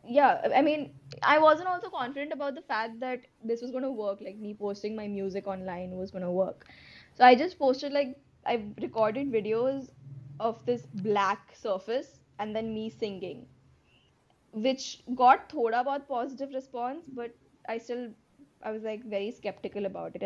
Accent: native